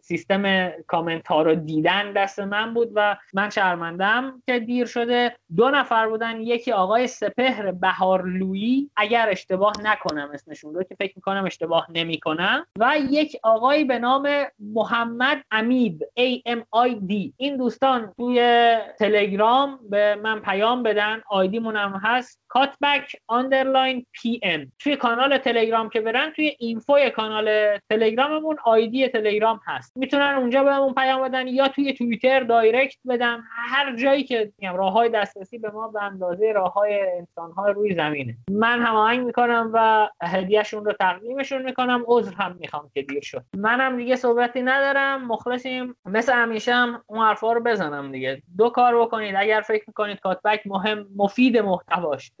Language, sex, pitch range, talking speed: Persian, male, 200-250 Hz, 145 wpm